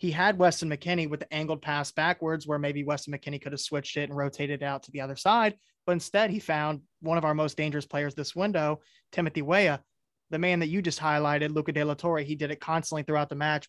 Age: 20-39